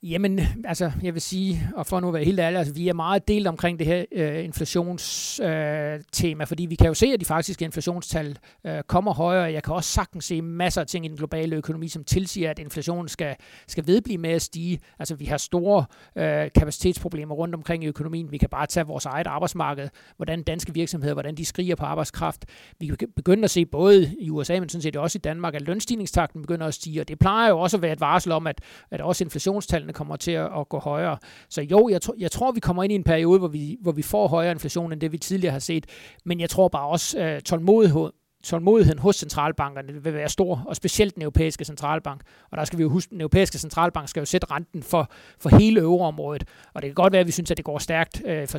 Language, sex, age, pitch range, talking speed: Danish, male, 60-79, 155-175 Hz, 235 wpm